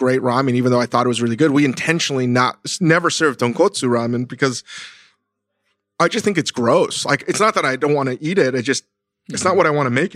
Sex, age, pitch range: male, 30-49, 120-145 Hz